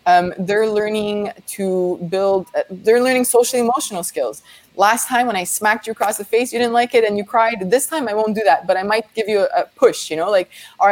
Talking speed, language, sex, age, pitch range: 245 wpm, English, female, 20-39, 180-240 Hz